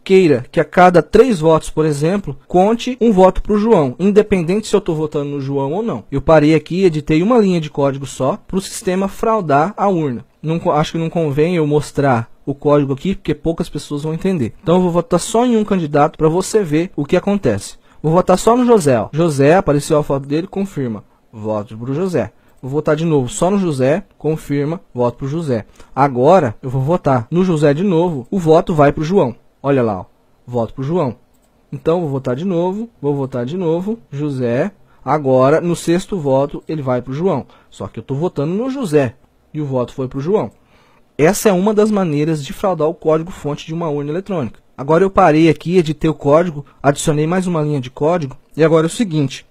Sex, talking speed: male, 220 wpm